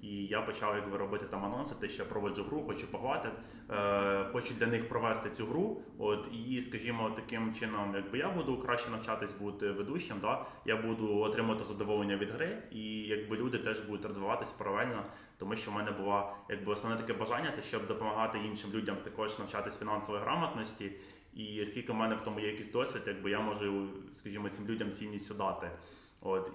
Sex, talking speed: male, 180 wpm